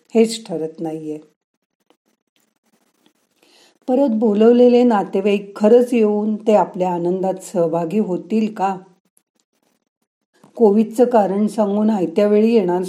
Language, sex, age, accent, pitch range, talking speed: Marathi, female, 40-59, native, 170-220 Hz, 95 wpm